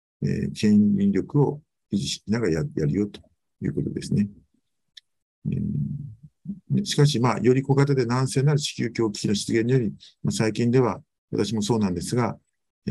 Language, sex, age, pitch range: Japanese, male, 50-69, 105-140 Hz